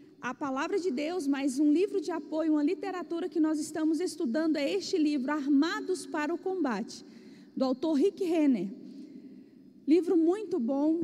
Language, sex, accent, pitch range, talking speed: Portuguese, female, Brazilian, 275-360 Hz, 160 wpm